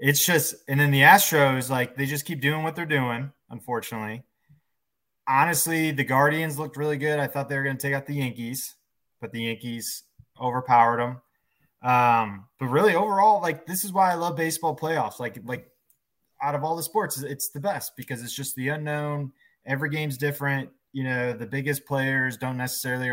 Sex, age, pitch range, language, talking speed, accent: male, 20-39, 120-150 Hz, English, 190 wpm, American